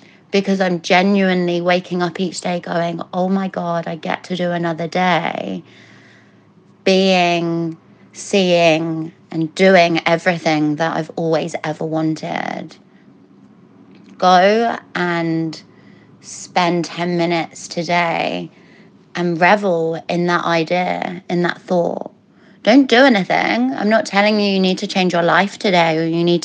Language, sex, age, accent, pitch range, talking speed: English, female, 30-49, British, 175-200 Hz, 130 wpm